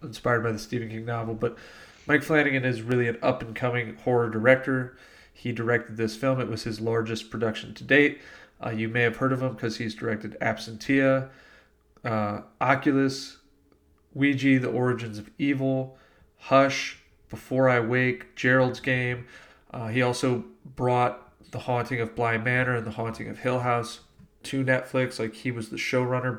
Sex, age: male, 30-49